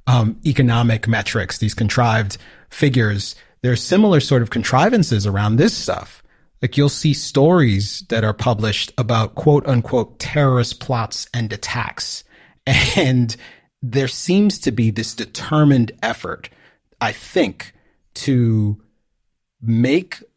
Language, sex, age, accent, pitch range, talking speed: English, male, 30-49, American, 110-130 Hz, 120 wpm